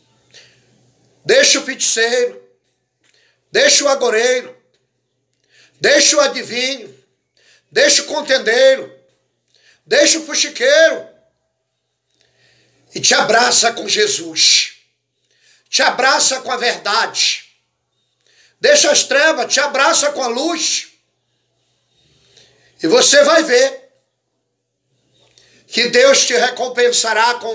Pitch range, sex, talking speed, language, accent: 220-305 Hz, male, 90 wpm, Portuguese, Brazilian